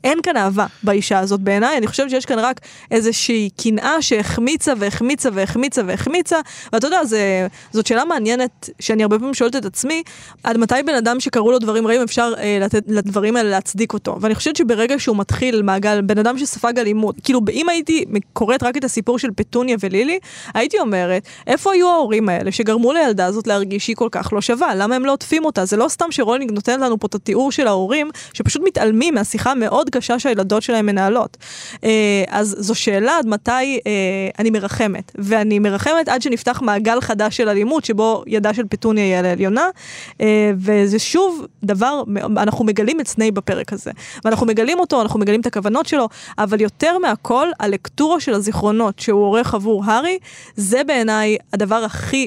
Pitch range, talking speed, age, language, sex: 210-255 Hz, 145 wpm, 20-39, Hebrew, female